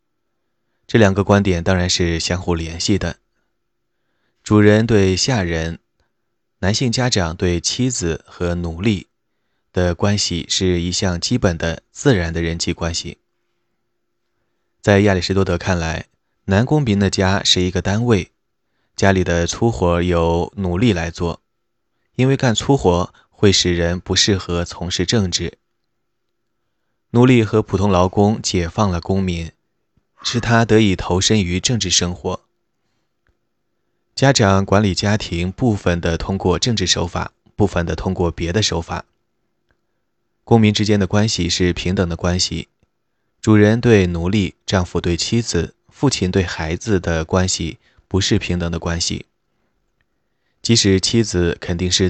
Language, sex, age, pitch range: Chinese, male, 20-39, 85-105 Hz